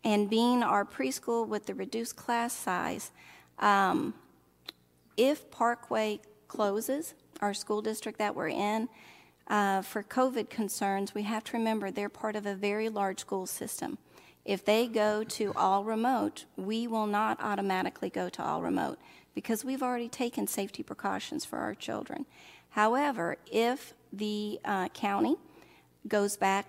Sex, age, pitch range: female, 40-59, 200-230 Hz